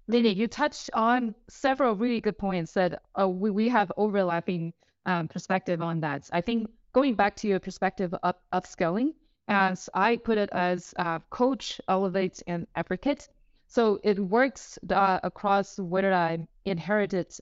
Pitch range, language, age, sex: 175-215 Hz, English, 20-39, female